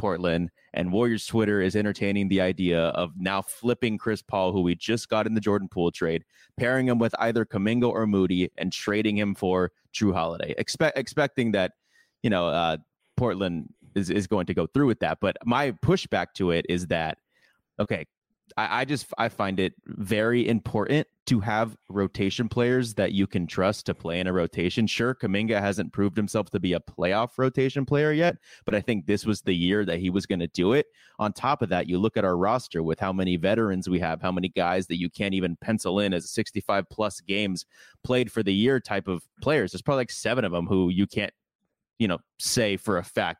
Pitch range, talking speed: 95-115 Hz, 215 wpm